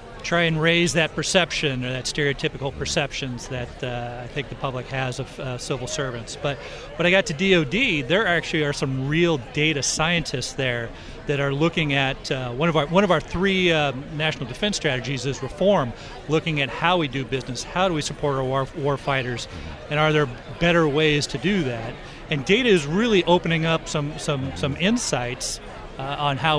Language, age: English, 40-59